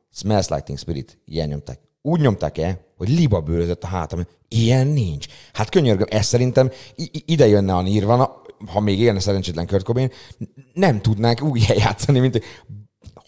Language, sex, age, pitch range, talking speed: Hungarian, male, 30-49, 90-120 Hz, 150 wpm